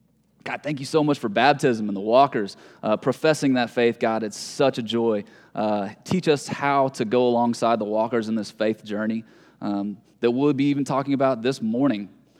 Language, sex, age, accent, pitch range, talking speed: English, male, 20-39, American, 110-135 Hz, 200 wpm